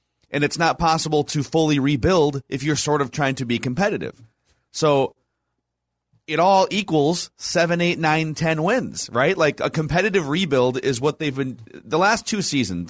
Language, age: English, 30-49